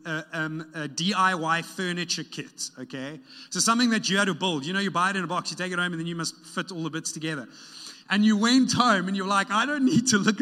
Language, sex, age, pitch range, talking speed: English, male, 30-49, 155-225 Hz, 270 wpm